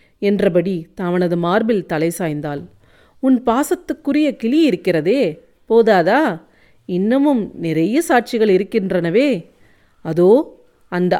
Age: 40-59